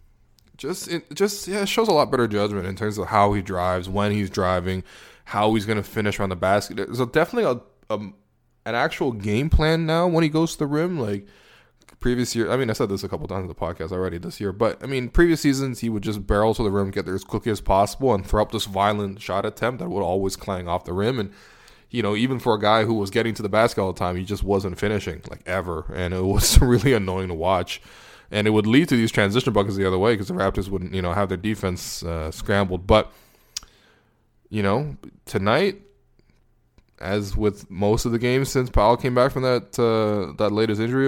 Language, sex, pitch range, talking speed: English, male, 100-120 Hz, 240 wpm